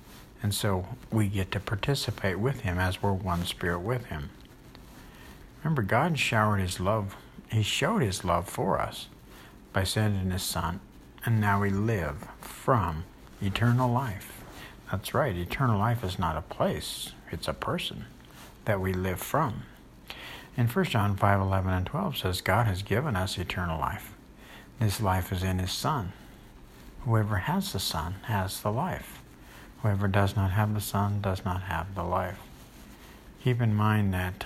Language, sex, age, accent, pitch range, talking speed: English, male, 60-79, American, 95-115 Hz, 160 wpm